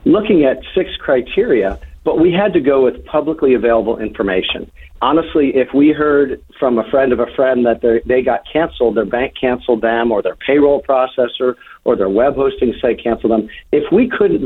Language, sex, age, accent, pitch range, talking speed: English, male, 50-69, American, 115-145 Hz, 185 wpm